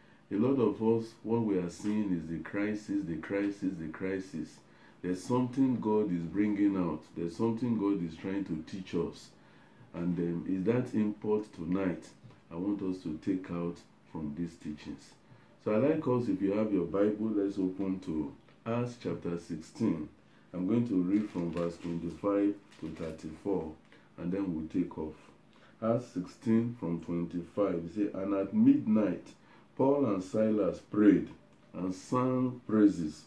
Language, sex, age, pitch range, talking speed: English, male, 50-69, 85-115 Hz, 160 wpm